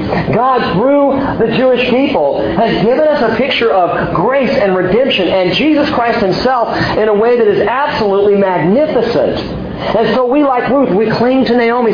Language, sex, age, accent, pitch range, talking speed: English, male, 40-59, American, 195-250 Hz, 170 wpm